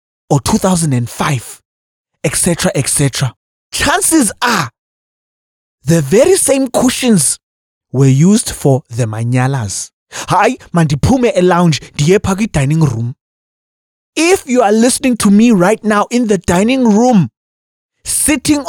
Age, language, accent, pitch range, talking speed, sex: 30-49, English, South African, 160-255 Hz, 120 wpm, male